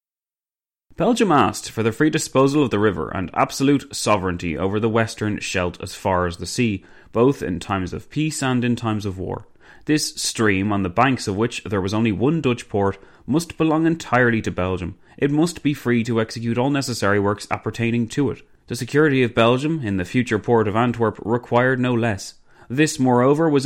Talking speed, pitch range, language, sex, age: 195 wpm, 100-130 Hz, English, male, 30-49